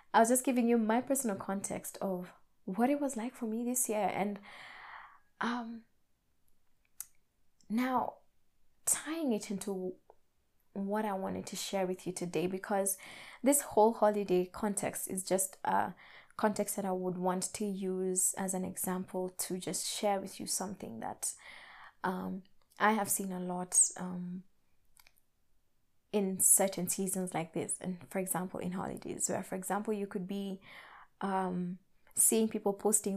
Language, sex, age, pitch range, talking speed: English, female, 20-39, 190-225 Hz, 150 wpm